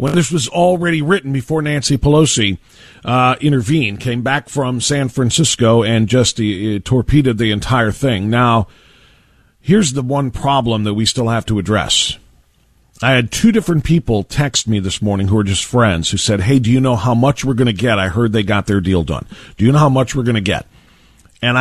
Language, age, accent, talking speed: English, 40-59, American, 210 wpm